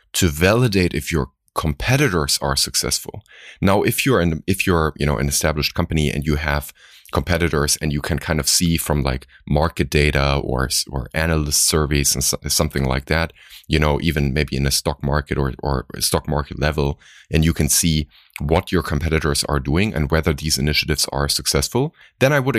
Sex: male